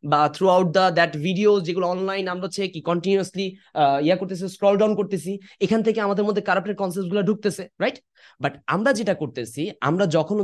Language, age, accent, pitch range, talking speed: English, 20-39, Indian, 150-200 Hz, 125 wpm